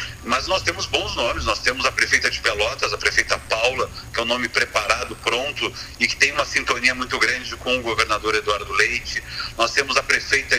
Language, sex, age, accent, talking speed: Portuguese, male, 40-59, Brazilian, 205 wpm